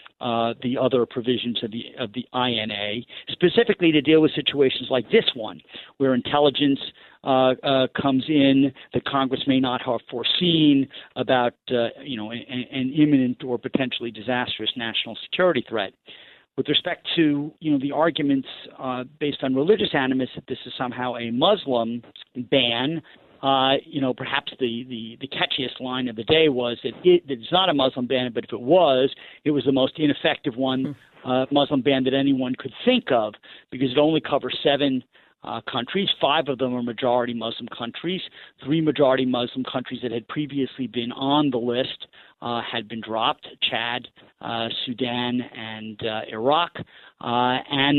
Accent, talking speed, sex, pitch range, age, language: American, 170 wpm, male, 125-145 Hz, 50-69, English